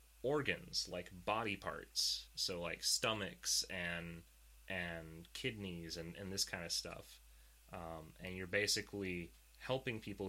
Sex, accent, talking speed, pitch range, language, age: male, American, 130 wpm, 90-130 Hz, English, 30-49